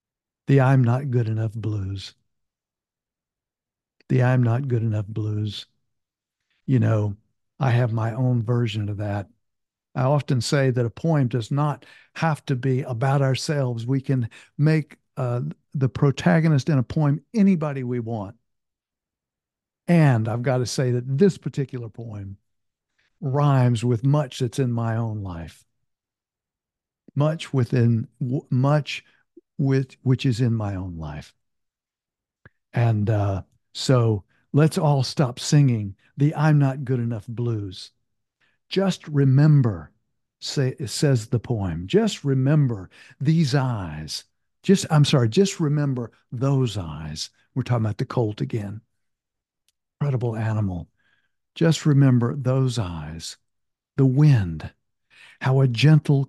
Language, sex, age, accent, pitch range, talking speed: English, male, 60-79, American, 110-140 Hz, 130 wpm